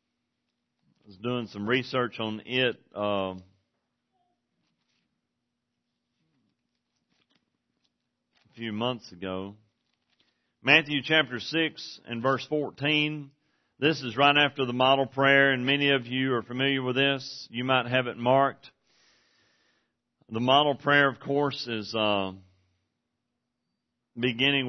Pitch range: 125-150 Hz